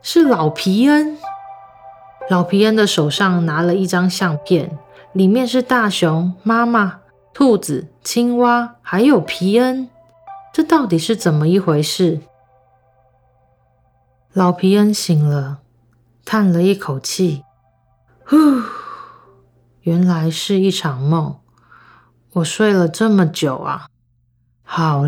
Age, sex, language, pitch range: 30-49, female, Chinese, 140-195 Hz